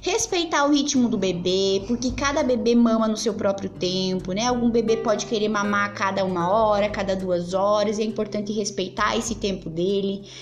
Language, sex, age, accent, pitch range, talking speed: Portuguese, female, 20-39, Brazilian, 220-315 Hz, 190 wpm